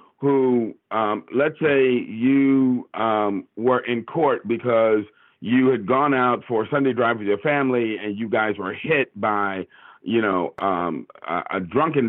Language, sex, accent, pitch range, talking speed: English, male, American, 105-140 Hz, 160 wpm